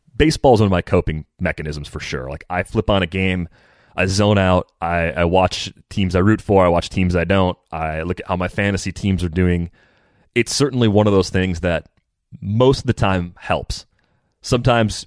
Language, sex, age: English, male, 30-49